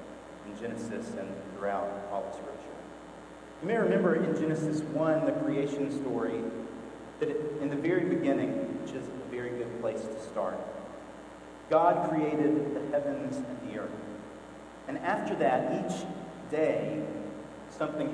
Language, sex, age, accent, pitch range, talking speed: English, male, 40-59, American, 140-180 Hz, 135 wpm